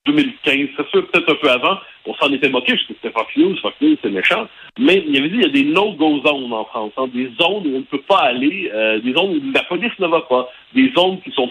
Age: 50-69